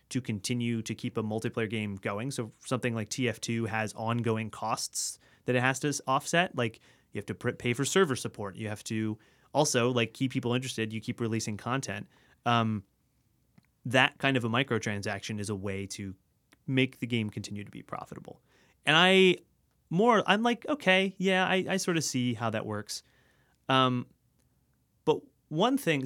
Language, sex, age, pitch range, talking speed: English, male, 30-49, 110-140 Hz, 175 wpm